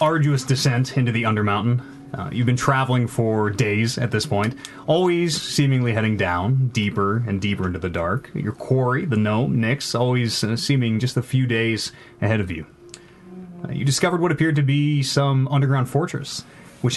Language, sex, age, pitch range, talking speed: English, male, 30-49, 105-140 Hz, 175 wpm